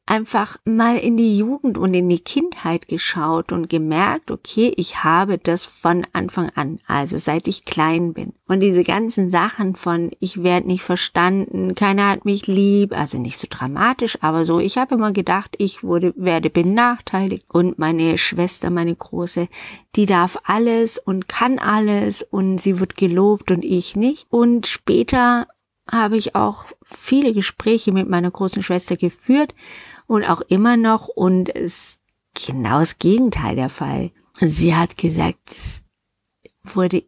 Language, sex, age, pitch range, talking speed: German, female, 50-69, 170-220 Hz, 155 wpm